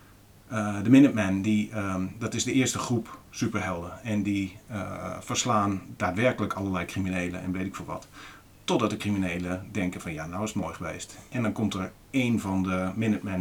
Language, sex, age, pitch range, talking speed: Dutch, male, 40-59, 95-110 Hz, 185 wpm